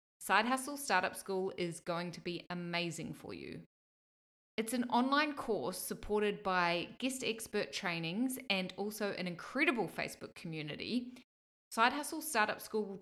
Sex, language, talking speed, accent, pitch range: female, English, 145 wpm, Australian, 175-225 Hz